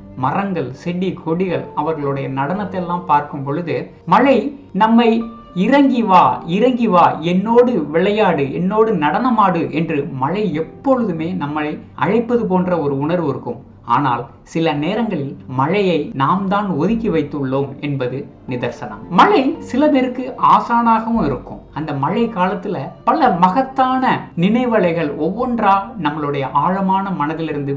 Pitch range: 150-225 Hz